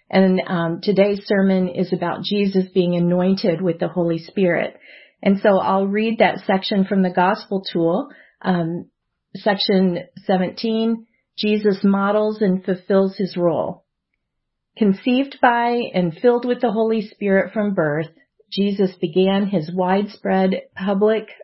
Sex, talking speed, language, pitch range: female, 130 wpm, English, 175-210 Hz